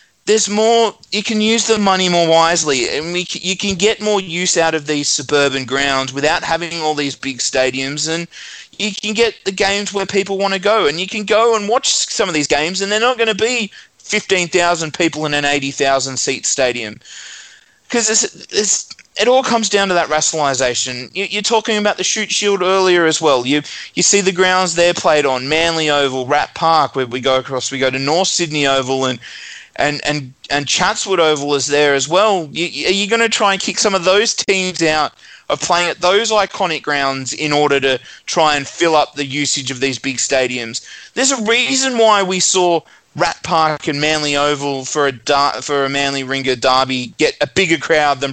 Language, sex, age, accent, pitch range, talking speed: English, male, 20-39, Australian, 140-200 Hz, 210 wpm